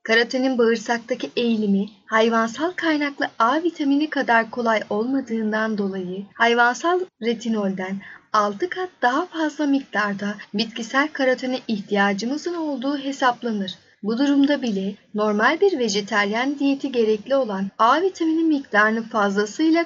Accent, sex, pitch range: native, female, 210-285 Hz